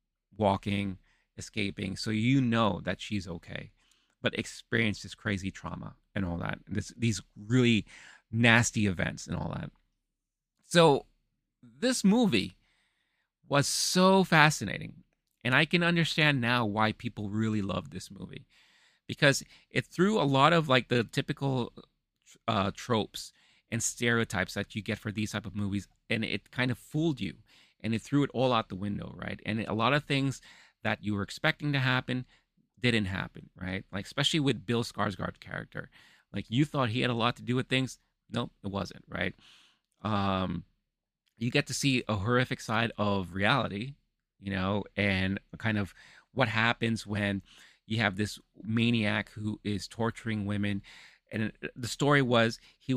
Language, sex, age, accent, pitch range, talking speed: English, male, 30-49, American, 100-130 Hz, 160 wpm